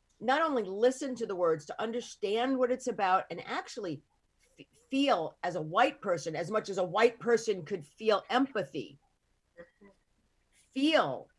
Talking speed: 155 wpm